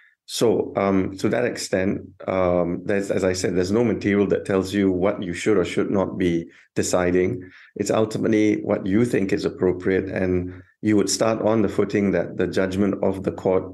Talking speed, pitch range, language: 190 wpm, 90-100 Hz, English